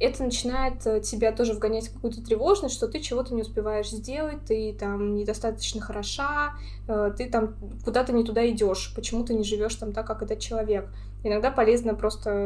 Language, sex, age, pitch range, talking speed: Russian, female, 20-39, 210-230 Hz, 175 wpm